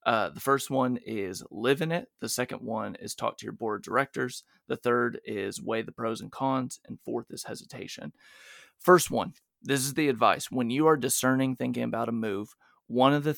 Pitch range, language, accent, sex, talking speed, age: 115-140 Hz, English, American, male, 205 wpm, 30-49